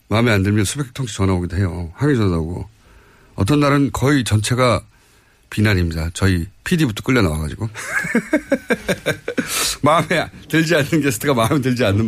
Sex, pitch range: male, 100-155 Hz